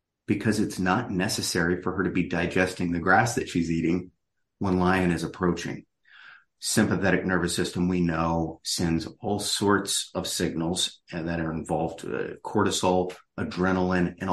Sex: male